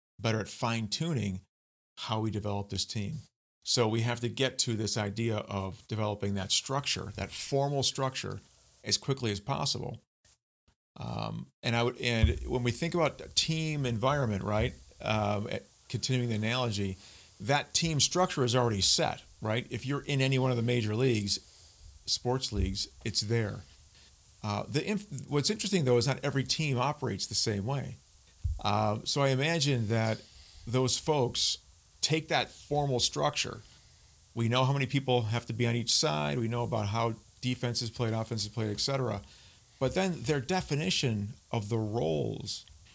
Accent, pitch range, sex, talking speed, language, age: American, 100-130 Hz, male, 165 wpm, English, 40-59